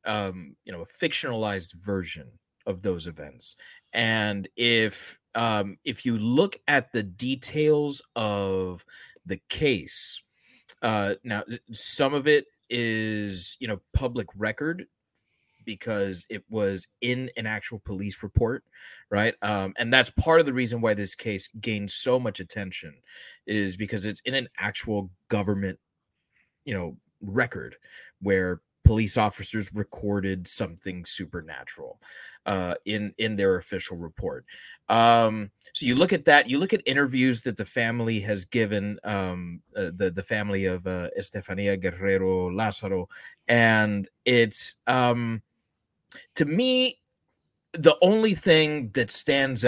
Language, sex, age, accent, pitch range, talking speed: English, male, 30-49, American, 95-120 Hz, 135 wpm